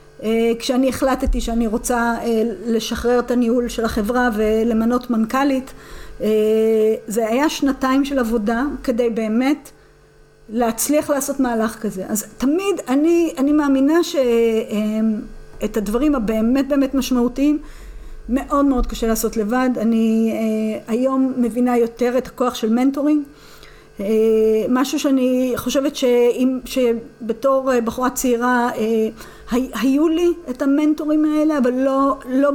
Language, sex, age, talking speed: Hebrew, female, 50-69, 110 wpm